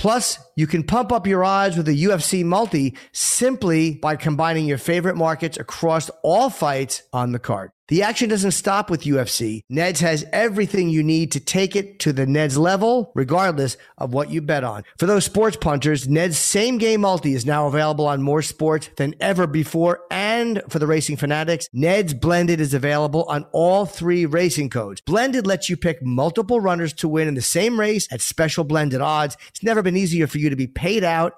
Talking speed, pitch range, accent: 200 wpm, 150-185 Hz, American